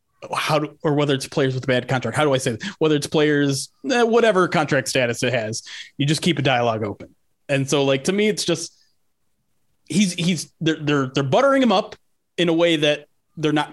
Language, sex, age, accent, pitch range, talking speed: English, male, 30-49, American, 125-160 Hz, 215 wpm